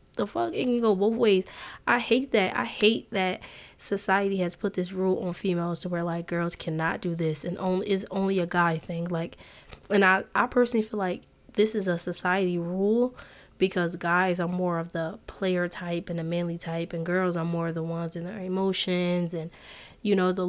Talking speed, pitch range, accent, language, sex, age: 210 wpm, 175-230 Hz, American, English, female, 20-39